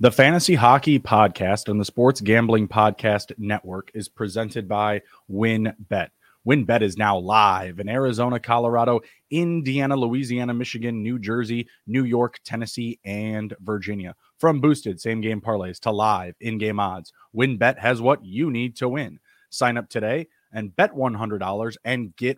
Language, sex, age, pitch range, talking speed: English, male, 30-49, 105-125 Hz, 145 wpm